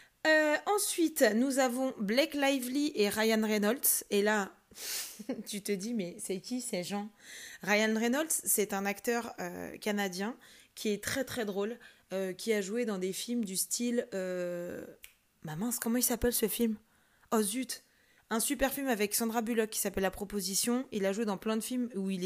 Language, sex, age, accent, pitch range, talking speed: French, female, 20-39, French, 200-245 Hz, 190 wpm